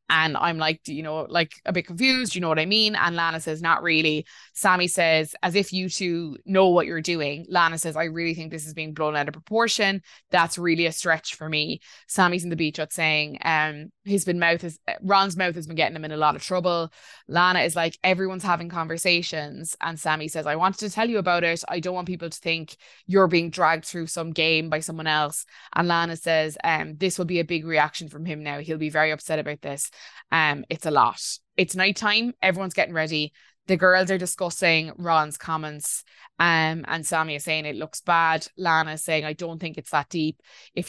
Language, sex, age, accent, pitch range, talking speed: English, female, 20-39, Irish, 155-180 Hz, 225 wpm